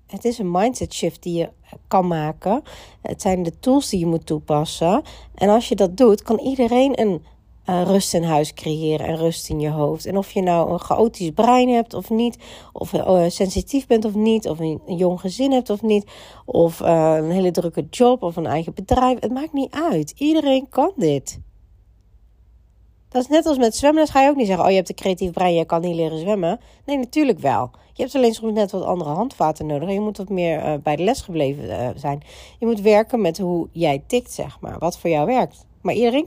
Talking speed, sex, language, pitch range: 230 wpm, female, Dutch, 160-235 Hz